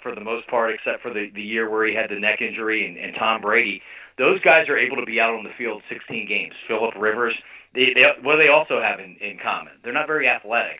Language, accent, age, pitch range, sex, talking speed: English, American, 40-59, 110-145 Hz, male, 260 wpm